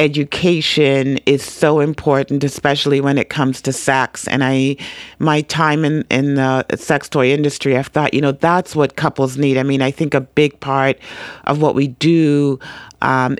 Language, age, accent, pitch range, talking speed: English, 40-59, American, 140-155 Hz, 185 wpm